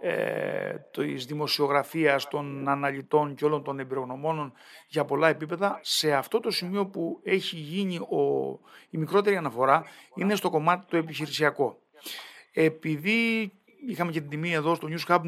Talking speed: 145 wpm